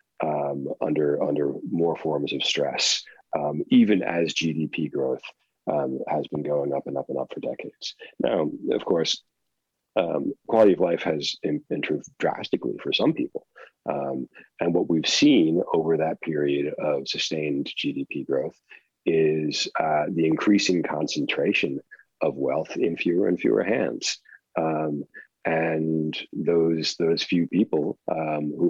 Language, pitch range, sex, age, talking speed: English, 75-95 Hz, male, 40-59, 140 wpm